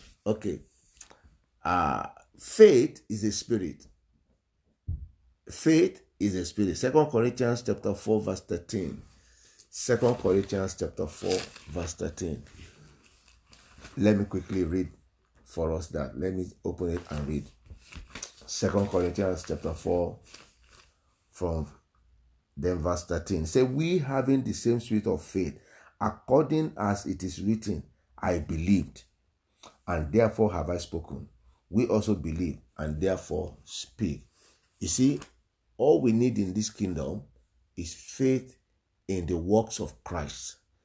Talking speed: 125 wpm